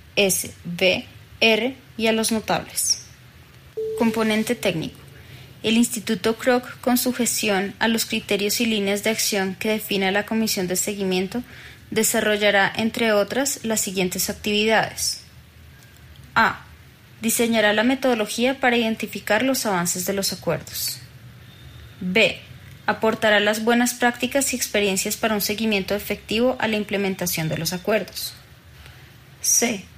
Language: Spanish